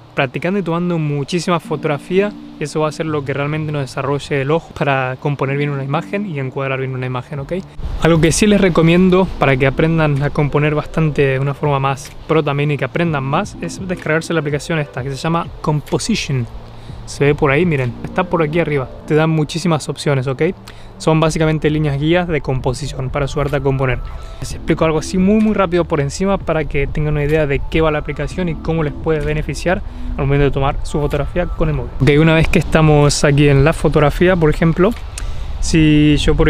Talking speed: 210 wpm